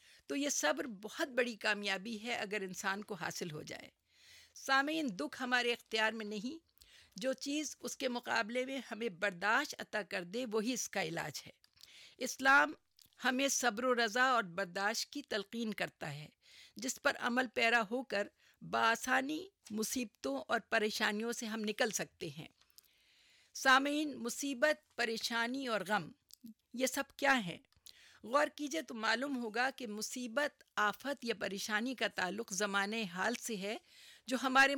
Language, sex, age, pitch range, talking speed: Urdu, female, 50-69, 210-260 Hz, 155 wpm